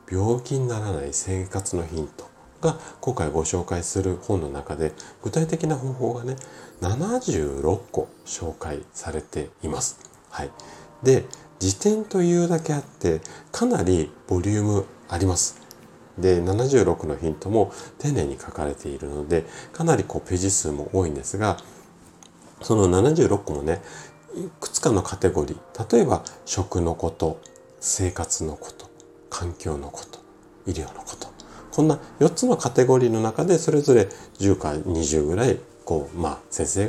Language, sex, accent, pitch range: Japanese, male, native, 85-140 Hz